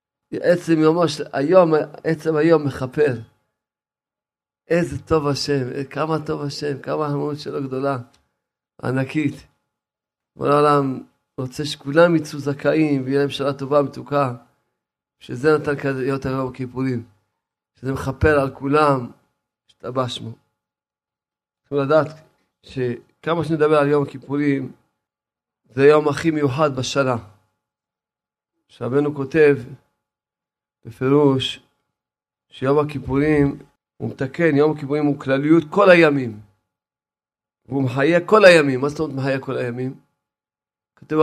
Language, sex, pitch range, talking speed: Hebrew, male, 135-155 Hz, 105 wpm